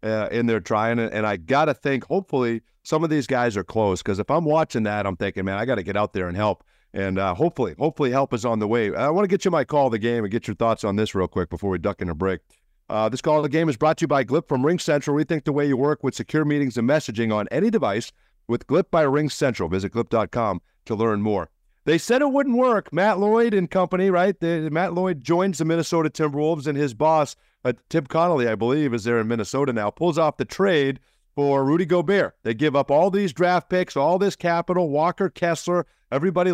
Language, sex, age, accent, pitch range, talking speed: English, male, 50-69, American, 110-160 Hz, 245 wpm